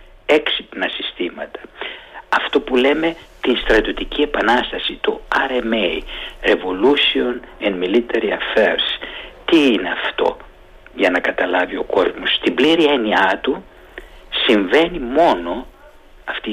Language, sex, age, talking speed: Greek, male, 50-69, 105 wpm